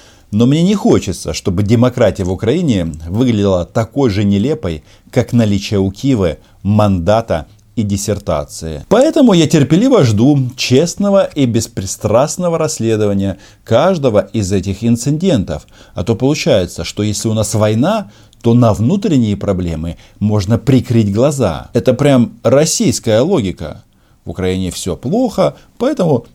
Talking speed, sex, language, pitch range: 125 wpm, male, Russian, 100-140 Hz